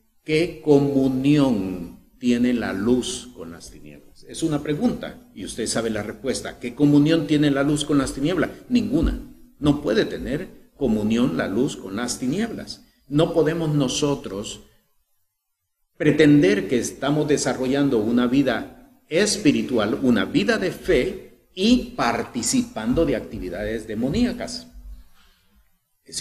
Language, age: Spanish, 50-69